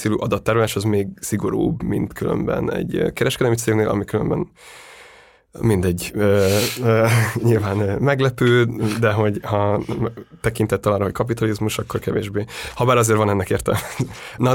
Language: Hungarian